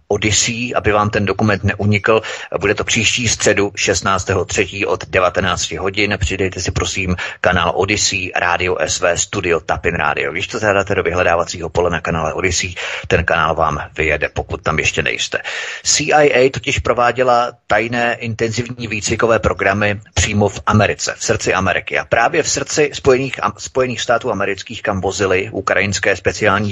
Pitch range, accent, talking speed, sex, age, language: 95-120 Hz, native, 150 wpm, male, 30-49, Czech